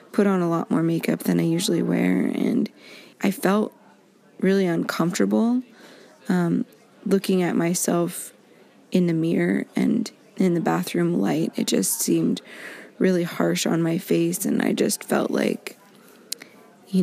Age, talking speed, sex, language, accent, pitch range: 20-39, 145 wpm, female, English, American, 170-195 Hz